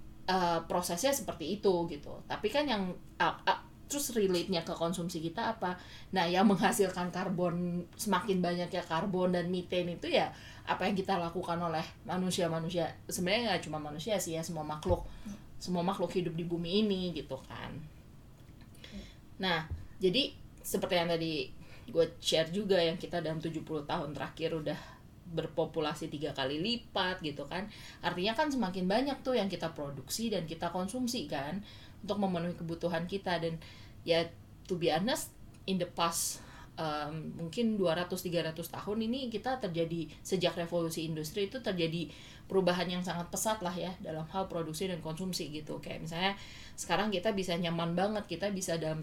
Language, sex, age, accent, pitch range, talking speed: Indonesian, female, 20-39, native, 165-190 Hz, 160 wpm